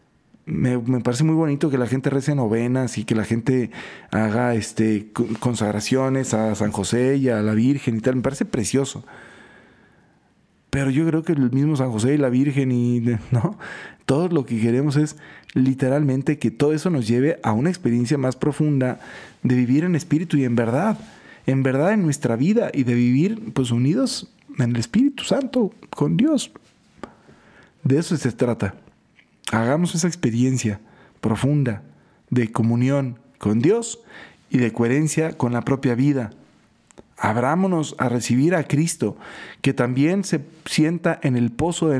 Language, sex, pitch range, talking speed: Spanish, male, 120-155 Hz, 160 wpm